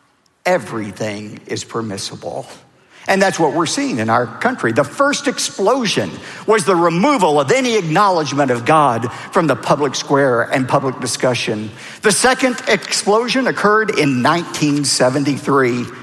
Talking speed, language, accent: 130 wpm, English, American